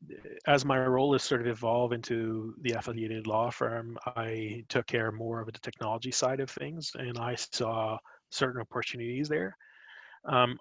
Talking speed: 165 wpm